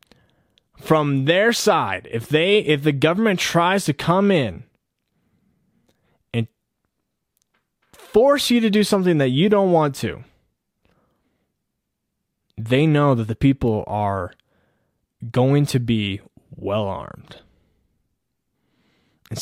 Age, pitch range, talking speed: 20-39, 125-180 Hz, 105 wpm